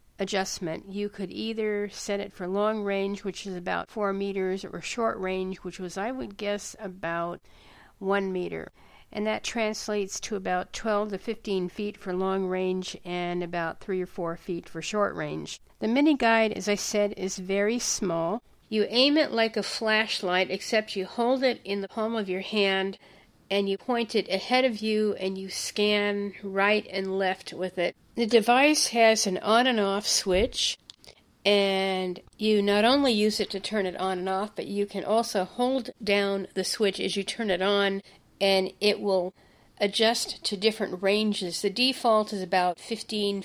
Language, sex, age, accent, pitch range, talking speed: English, female, 50-69, American, 190-215 Hz, 180 wpm